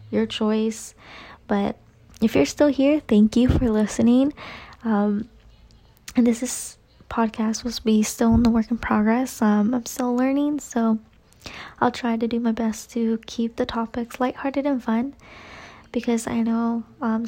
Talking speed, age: 160 wpm, 20-39